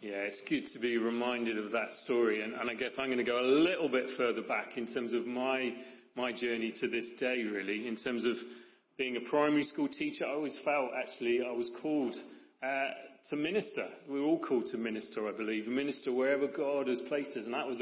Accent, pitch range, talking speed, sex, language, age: British, 120-140 Hz, 225 wpm, male, English, 40-59